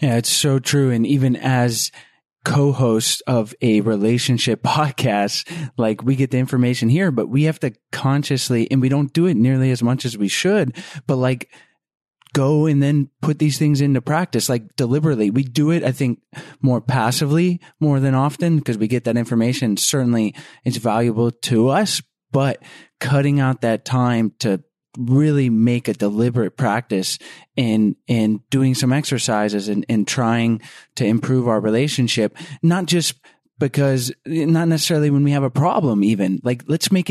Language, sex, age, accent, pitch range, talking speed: English, male, 20-39, American, 115-145 Hz, 165 wpm